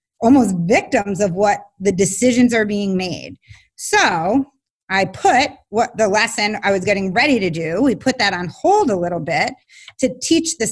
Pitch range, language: 195-260 Hz, English